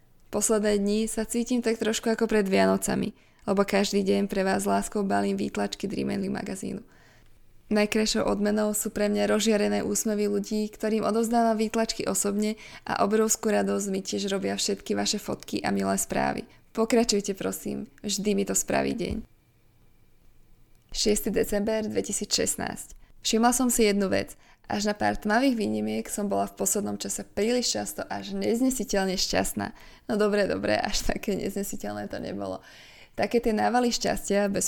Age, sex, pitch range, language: 20-39, female, 185-220 Hz, Slovak